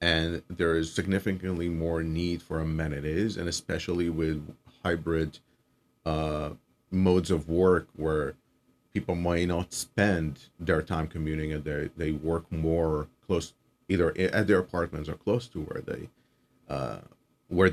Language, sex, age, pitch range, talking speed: English, male, 30-49, 80-90 Hz, 135 wpm